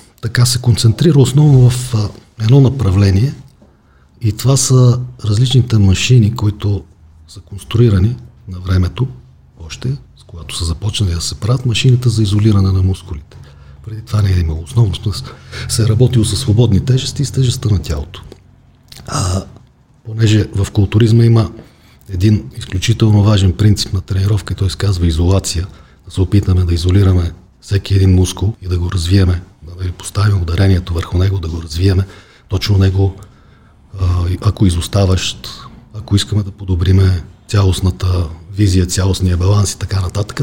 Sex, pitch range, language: male, 90-115 Hz, Bulgarian